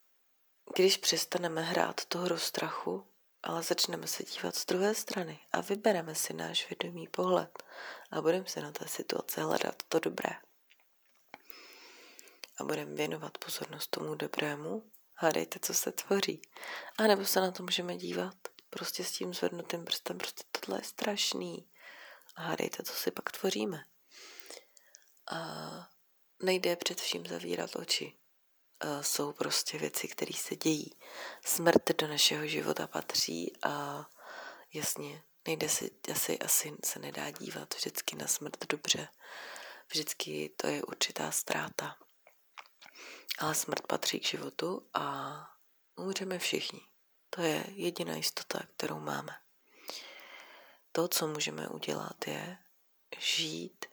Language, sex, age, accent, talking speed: Czech, female, 30-49, native, 125 wpm